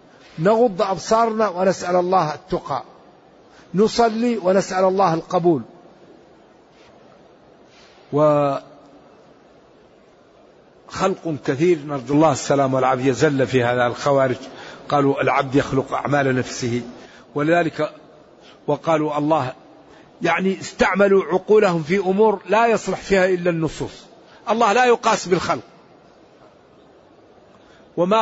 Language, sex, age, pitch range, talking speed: Arabic, male, 50-69, 155-200 Hz, 90 wpm